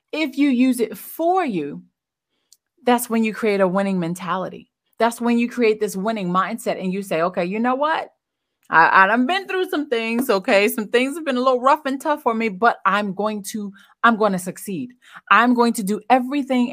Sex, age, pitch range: female, 30-49, 190-245 Hz